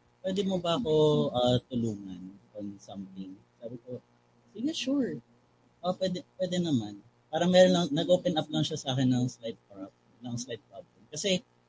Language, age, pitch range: Filipino, 20-39, 110-155 Hz